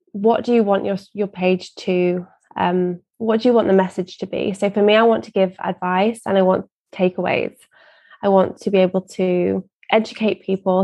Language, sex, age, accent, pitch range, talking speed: English, female, 20-39, British, 185-220 Hz, 205 wpm